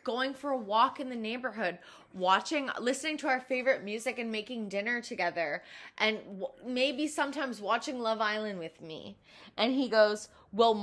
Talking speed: 165 wpm